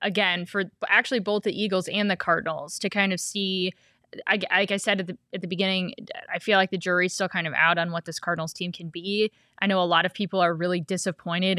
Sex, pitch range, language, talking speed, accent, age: female, 175-200 Hz, English, 235 wpm, American, 20-39